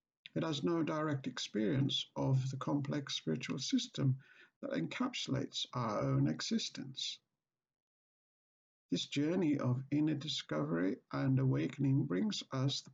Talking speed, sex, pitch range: 115 wpm, male, 120-145 Hz